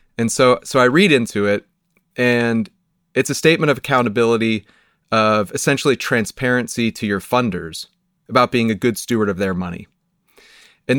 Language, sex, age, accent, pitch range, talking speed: English, male, 30-49, American, 100-130 Hz, 155 wpm